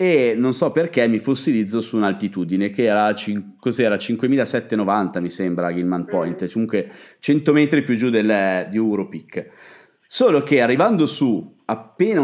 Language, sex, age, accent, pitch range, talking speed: Italian, male, 30-49, native, 105-150 Hz, 135 wpm